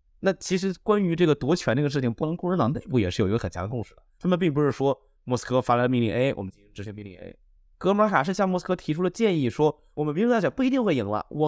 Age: 20-39